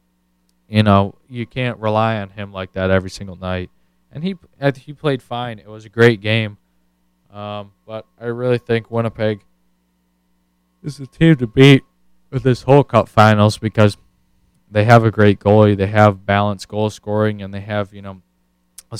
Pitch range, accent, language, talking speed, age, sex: 90-110 Hz, American, English, 175 wpm, 20-39, male